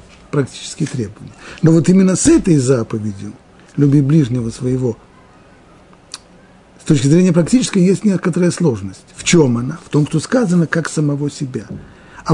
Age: 50-69